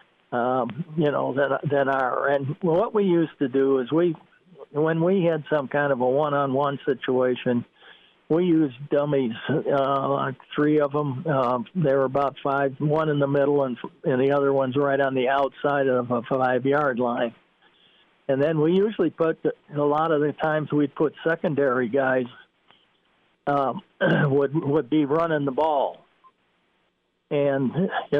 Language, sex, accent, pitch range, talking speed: English, male, American, 135-155 Hz, 160 wpm